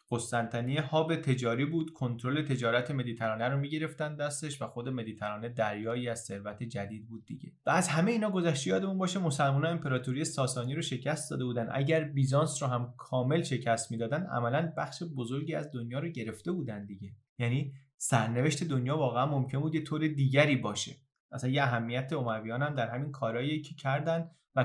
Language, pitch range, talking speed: Persian, 120-155 Hz, 170 wpm